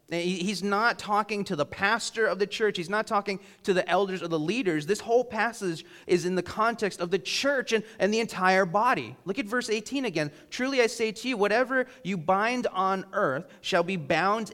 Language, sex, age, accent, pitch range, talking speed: English, male, 30-49, American, 180-230 Hz, 210 wpm